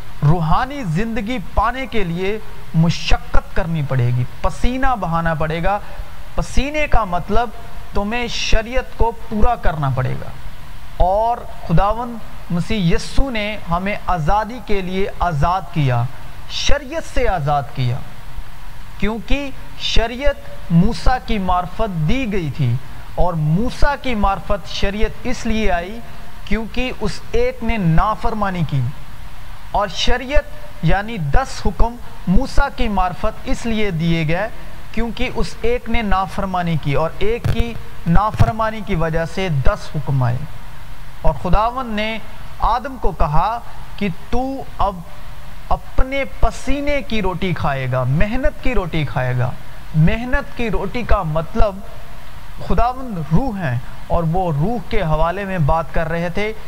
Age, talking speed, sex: 40-59, 135 wpm, male